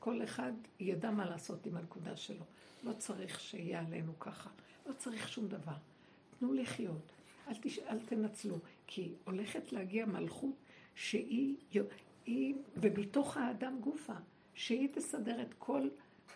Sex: female